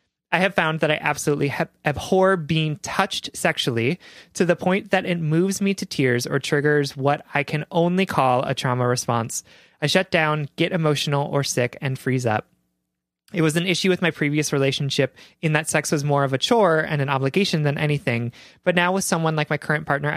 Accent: American